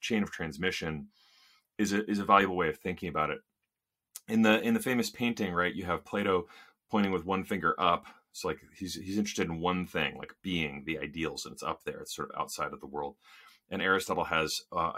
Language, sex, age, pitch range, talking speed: English, male, 30-49, 85-115 Hz, 220 wpm